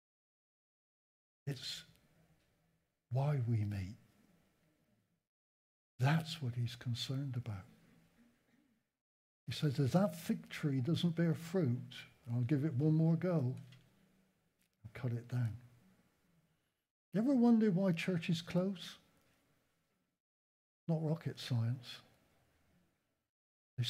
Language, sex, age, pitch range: English, male, 60-79, 130-170 Hz